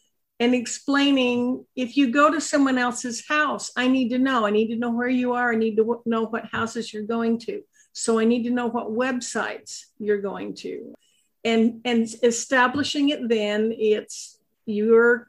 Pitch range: 220-255 Hz